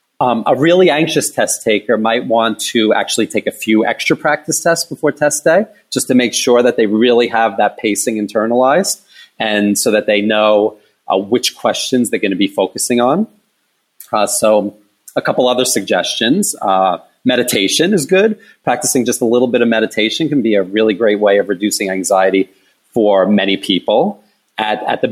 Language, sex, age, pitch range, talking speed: English, male, 30-49, 105-140 Hz, 180 wpm